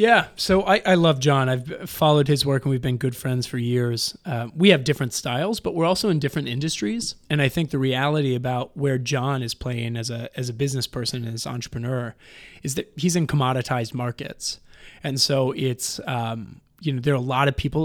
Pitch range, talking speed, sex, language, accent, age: 120-145 Hz, 215 wpm, male, English, American, 30-49